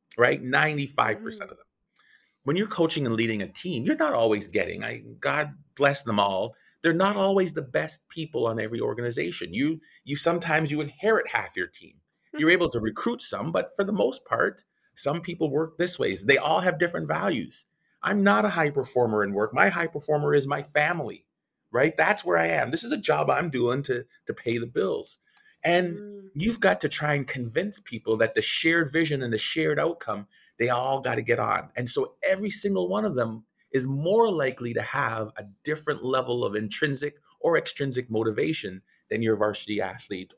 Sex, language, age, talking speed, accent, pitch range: male, English, 30-49, 200 wpm, American, 120-175 Hz